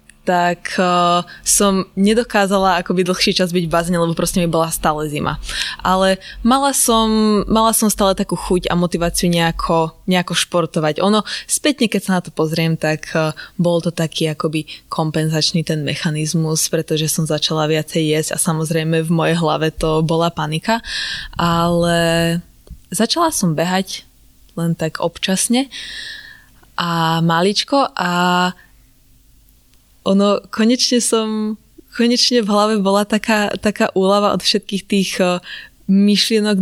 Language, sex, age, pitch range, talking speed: Slovak, female, 20-39, 165-200 Hz, 130 wpm